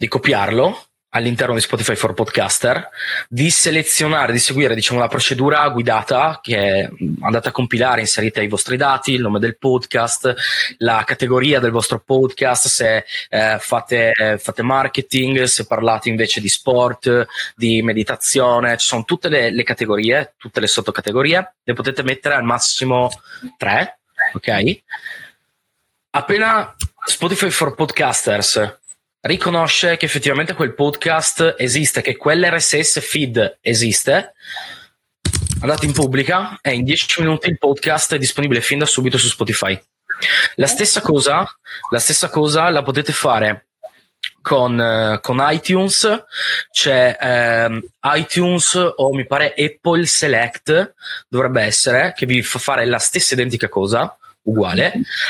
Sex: male